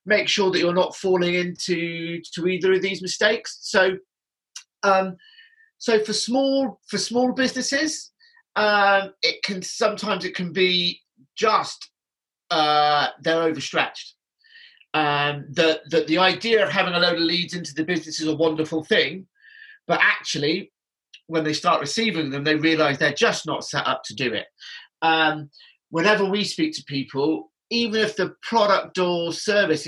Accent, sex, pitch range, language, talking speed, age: British, male, 155-205 Hz, English, 160 wpm, 40-59